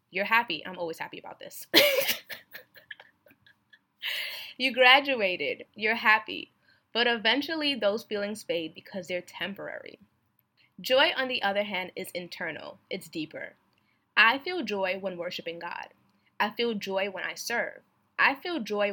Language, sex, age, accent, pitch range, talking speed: English, female, 20-39, American, 175-235 Hz, 135 wpm